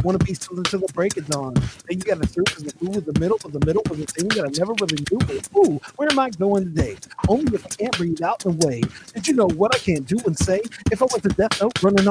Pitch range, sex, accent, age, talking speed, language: 180-230 Hz, male, American, 40-59, 290 wpm, English